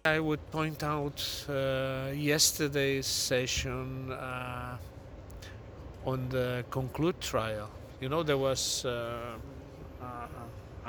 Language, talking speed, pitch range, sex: English, 95 wpm, 105-130 Hz, male